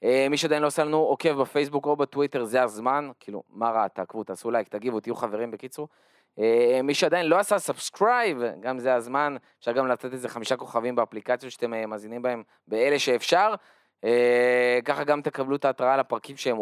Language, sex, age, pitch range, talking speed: Hebrew, male, 20-39, 120-150 Hz, 190 wpm